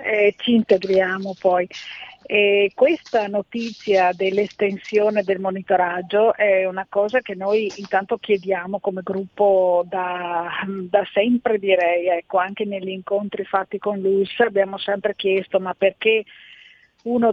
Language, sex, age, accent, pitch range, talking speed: Italian, female, 40-59, native, 190-215 Hz, 125 wpm